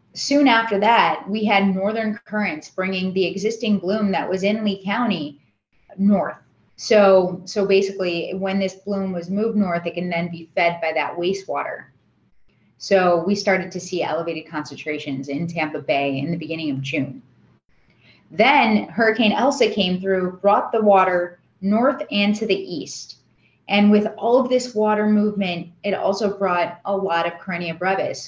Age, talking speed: 20-39, 165 wpm